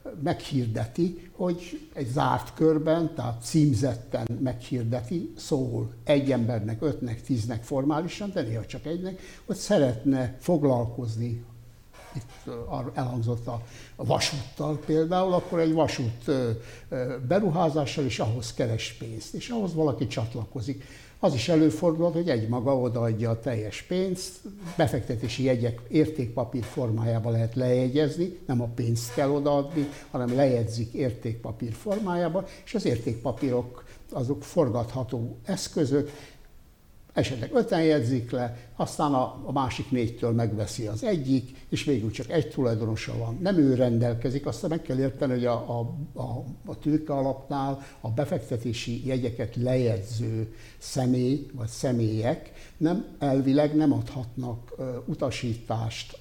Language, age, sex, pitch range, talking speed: Hungarian, 60-79, male, 120-150 Hz, 120 wpm